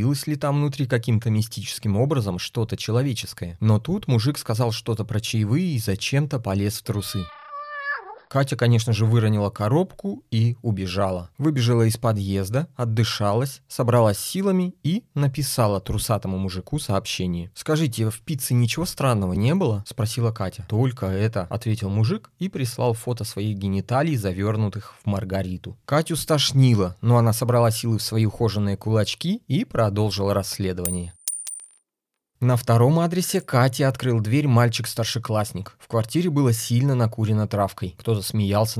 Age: 20-39